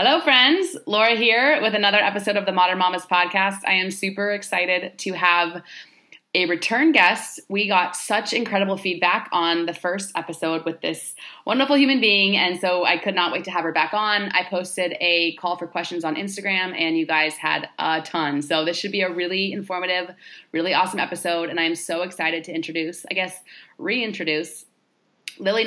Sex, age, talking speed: female, 20-39, 190 wpm